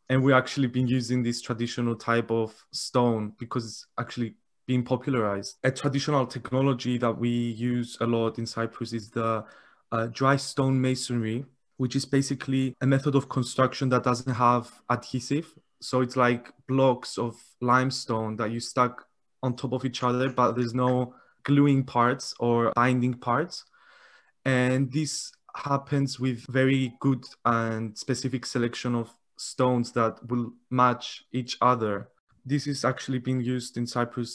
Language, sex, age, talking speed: English, male, 20-39, 150 wpm